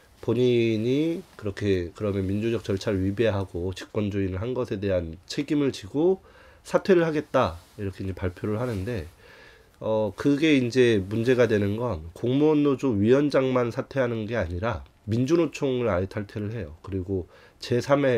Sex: male